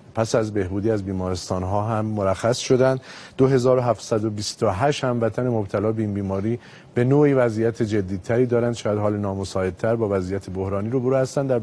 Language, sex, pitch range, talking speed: Persian, male, 105-130 Hz, 160 wpm